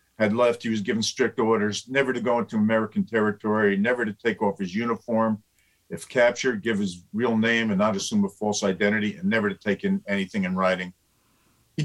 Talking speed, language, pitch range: 205 wpm, English, 110-135 Hz